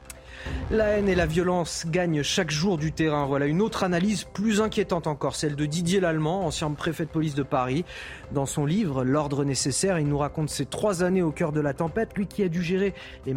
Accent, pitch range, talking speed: French, 135-185 Hz, 220 wpm